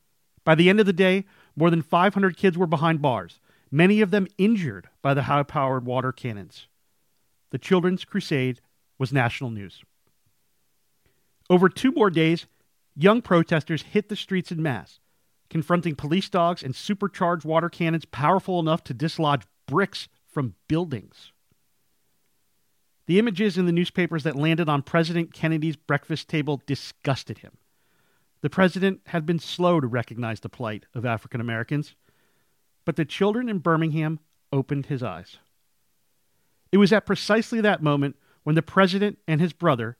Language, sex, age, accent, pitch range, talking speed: English, male, 40-59, American, 135-180 Hz, 145 wpm